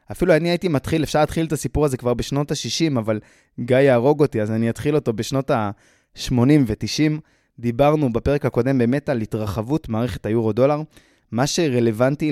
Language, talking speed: Hebrew, 160 wpm